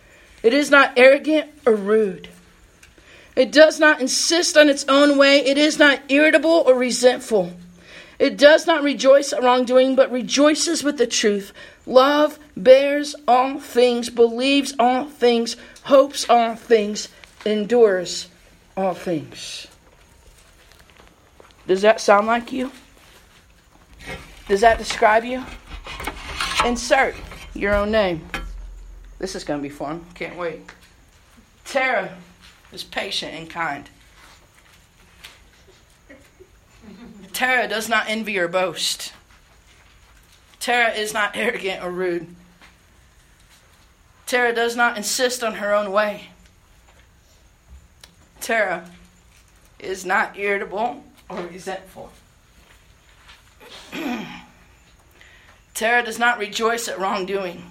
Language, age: English, 50-69